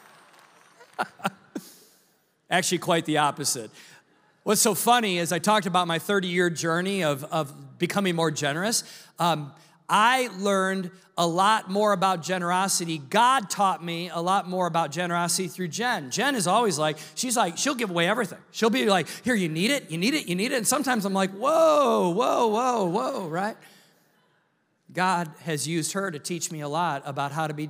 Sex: male